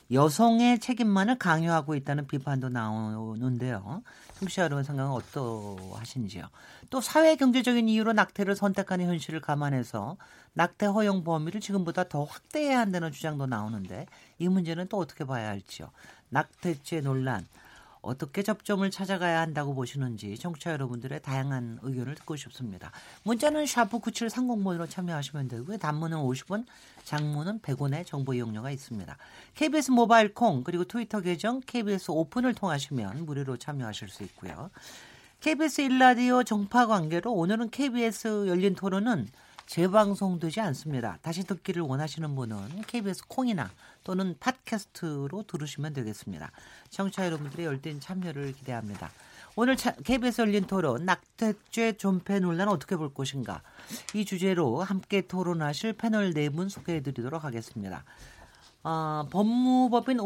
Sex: male